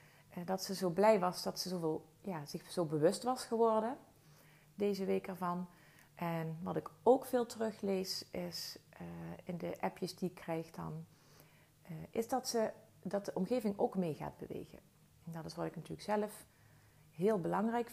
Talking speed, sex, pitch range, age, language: 175 wpm, female, 155-200 Hz, 30-49, Dutch